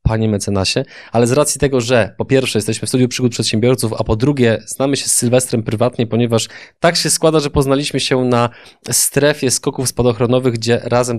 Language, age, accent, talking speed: Polish, 20-39, native, 190 wpm